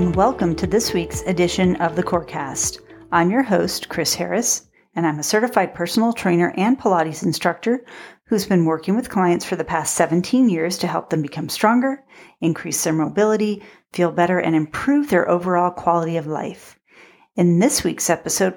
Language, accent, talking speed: English, American, 170 wpm